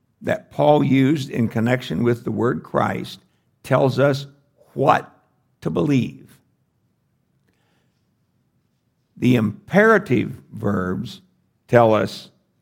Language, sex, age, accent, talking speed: English, male, 60-79, American, 90 wpm